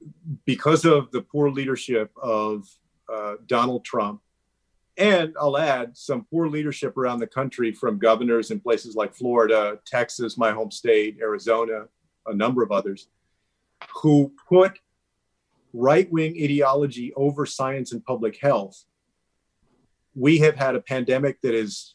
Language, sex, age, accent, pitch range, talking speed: English, male, 40-59, American, 115-140 Hz, 135 wpm